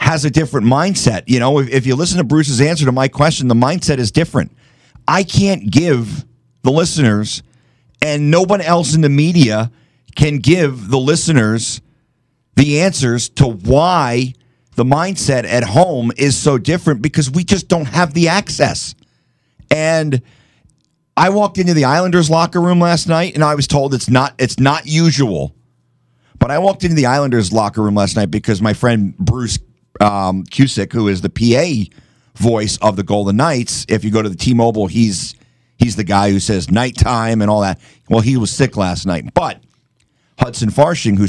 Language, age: English, 40-59